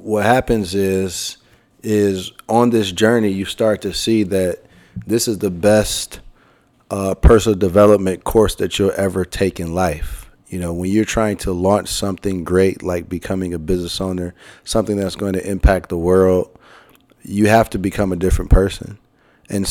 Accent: American